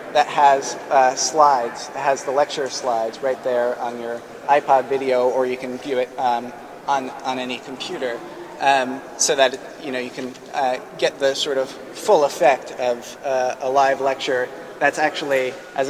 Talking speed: 175 wpm